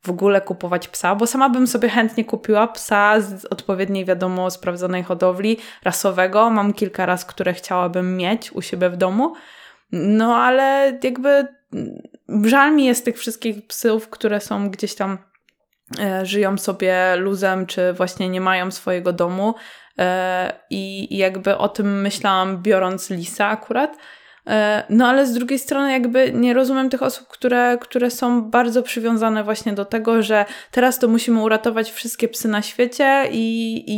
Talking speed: 150 wpm